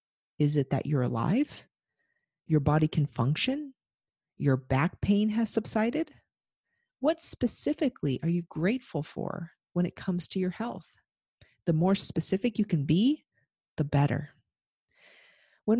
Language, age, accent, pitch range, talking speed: English, 40-59, American, 150-210 Hz, 135 wpm